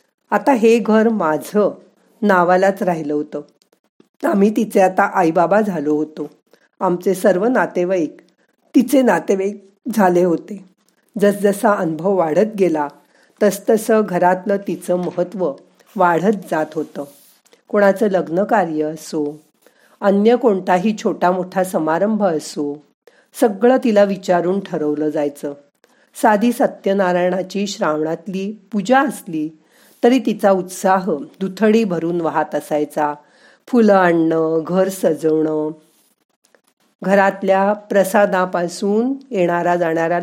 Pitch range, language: 165-210 Hz, Marathi